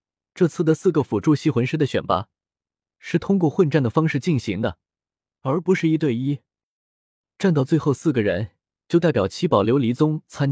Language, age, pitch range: Chinese, 20-39, 110-170 Hz